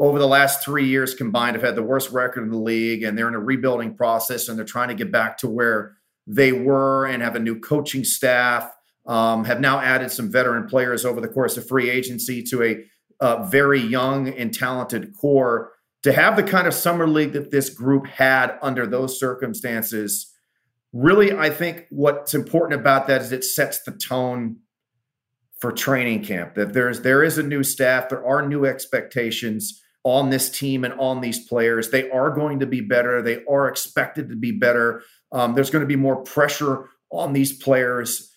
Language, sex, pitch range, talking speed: English, male, 120-140 Hz, 195 wpm